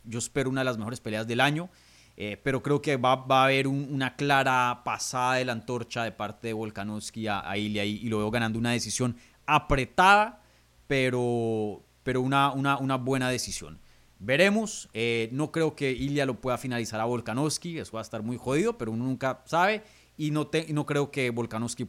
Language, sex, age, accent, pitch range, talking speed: Spanish, male, 30-49, Colombian, 115-155 Hz, 205 wpm